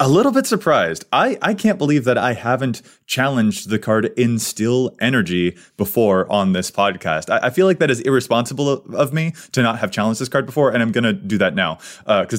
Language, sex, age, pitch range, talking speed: English, male, 30-49, 110-145 Hz, 225 wpm